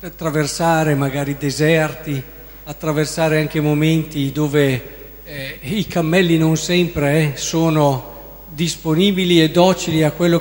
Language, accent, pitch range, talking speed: Italian, native, 160-210 Hz, 110 wpm